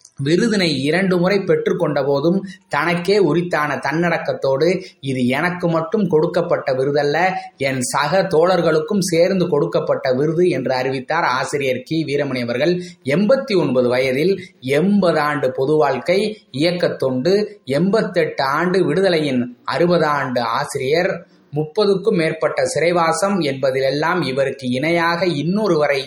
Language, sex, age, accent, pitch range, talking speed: Tamil, male, 20-39, native, 145-185 Hz, 115 wpm